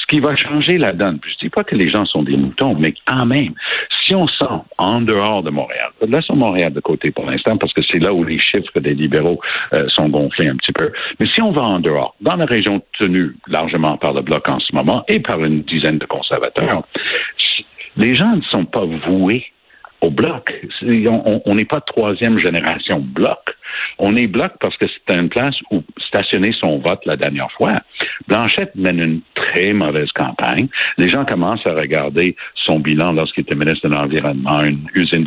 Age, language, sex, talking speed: 60-79, French, male, 200 wpm